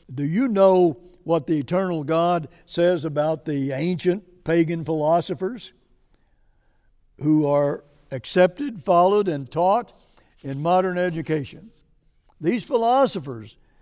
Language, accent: English, American